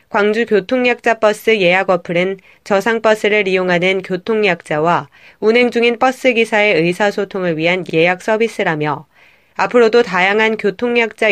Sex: female